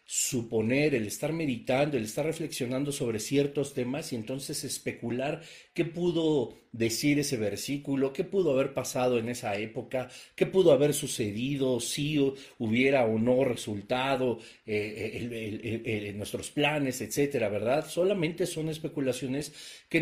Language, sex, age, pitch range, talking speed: Spanish, male, 40-59, 120-150 Hz, 130 wpm